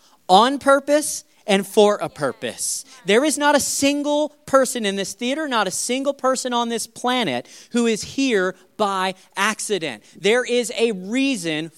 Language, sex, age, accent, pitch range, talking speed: English, male, 40-59, American, 180-250 Hz, 160 wpm